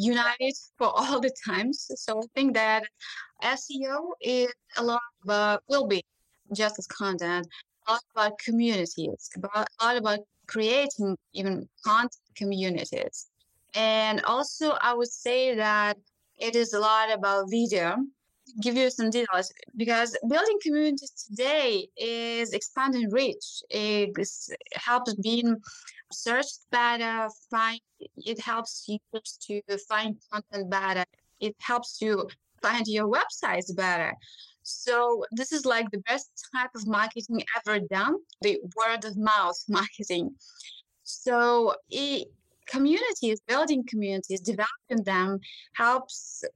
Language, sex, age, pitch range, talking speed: English, female, 20-39, 210-265 Hz, 130 wpm